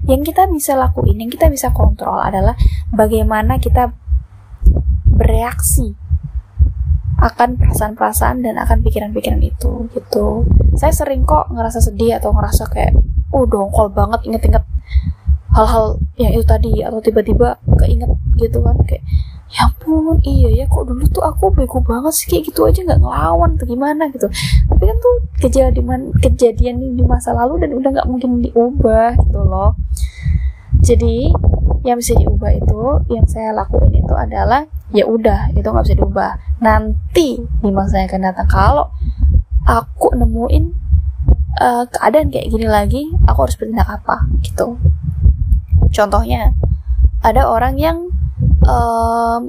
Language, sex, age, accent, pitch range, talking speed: Indonesian, female, 10-29, native, 75-95 Hz, 140 wpm